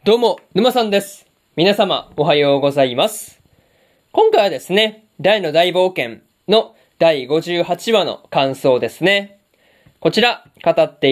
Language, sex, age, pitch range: Japanese, male, 20-39, 150-200 Hz